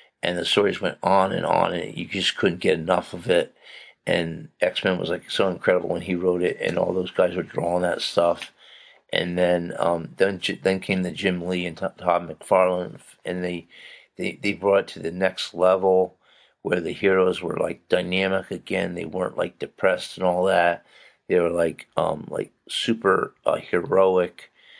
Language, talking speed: English, 185 wpm